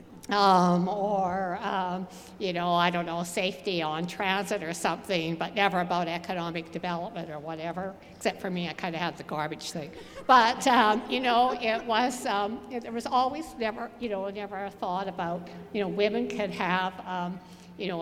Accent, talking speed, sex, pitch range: American, 180 wpm, female, 175-220 Hz